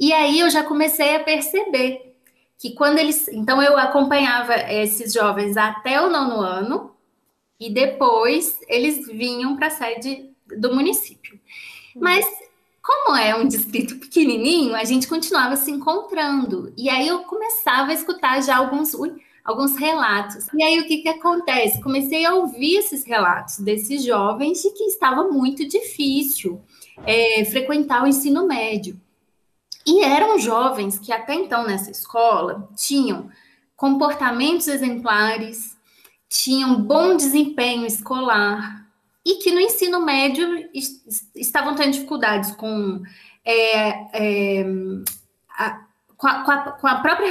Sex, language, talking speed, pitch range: female, Portuguese, 125 wpm, 230-310 Hz